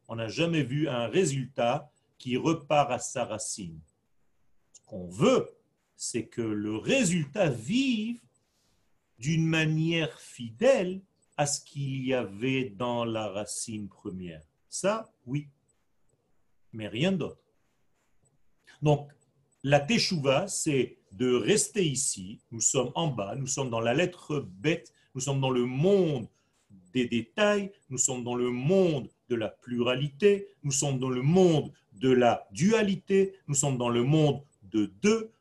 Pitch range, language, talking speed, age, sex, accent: 120-170 Hz, French, 140 wpm, 40-59, male, French